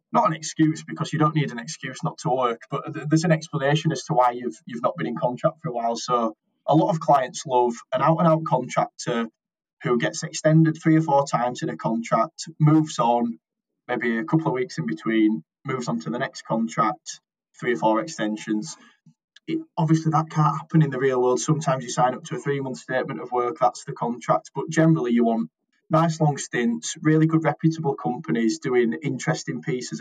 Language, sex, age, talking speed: English, male, 20-39, 200 wpm